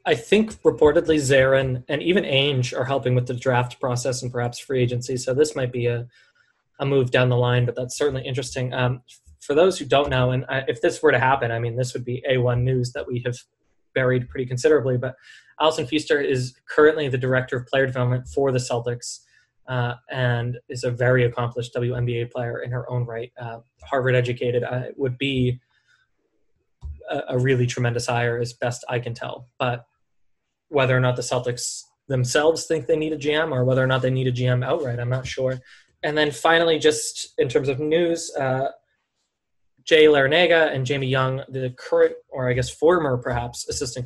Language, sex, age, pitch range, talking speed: English, male, 20-39, 125-150 Hz, 195 wpm